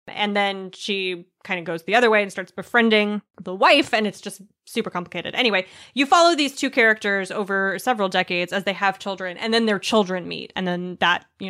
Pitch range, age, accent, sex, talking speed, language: 180-220 Hz, 20-39, American, female, 215 wpm, English